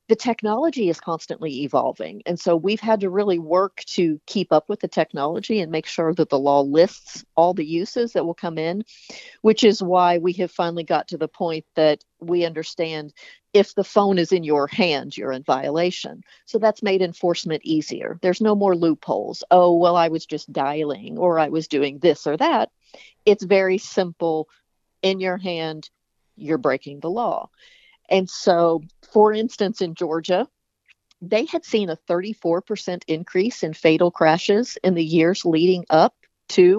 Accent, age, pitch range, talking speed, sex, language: American, 50-69, 165-200 Hz, 180 wpm, female, English